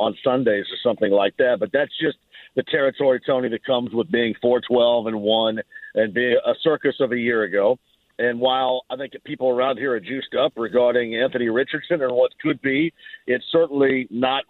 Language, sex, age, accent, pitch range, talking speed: English, male, 50-69, American, 125-165 Hz, 200 wpm